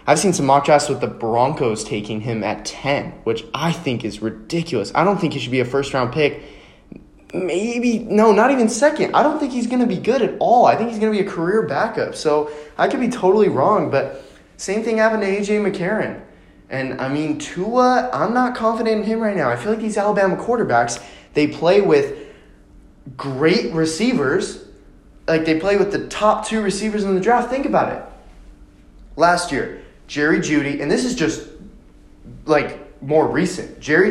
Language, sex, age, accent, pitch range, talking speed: English, male, 20-39, American, 135-205 Hz, 195 wpm